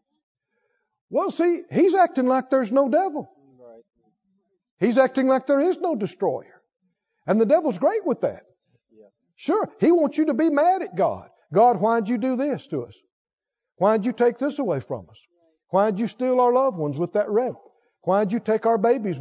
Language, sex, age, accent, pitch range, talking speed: English, male, 50-69, American, 225-330 Hz, 180 wpm